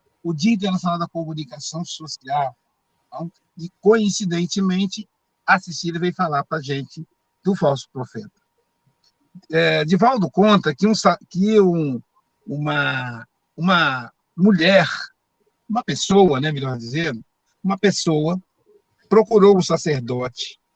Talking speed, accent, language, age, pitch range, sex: 115 wpm, Brazilian, Portuguese, 60-79, 160-215 Hz, male